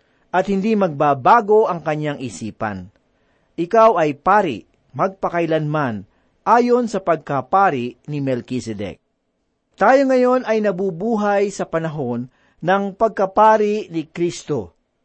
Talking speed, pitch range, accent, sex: 100 wpm, 145-205 Hz, native, male